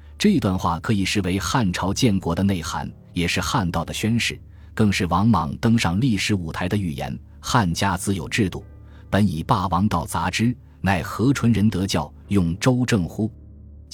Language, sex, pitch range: Chinese, male, 85-110 Hz